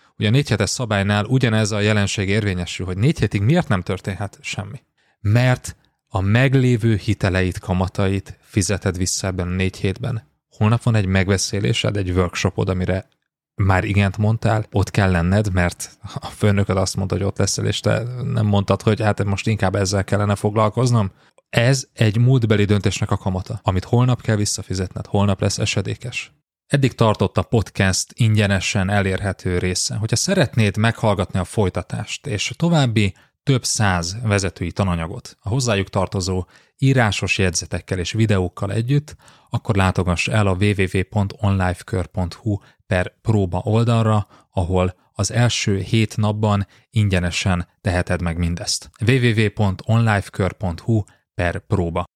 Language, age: Hungarian, 30-49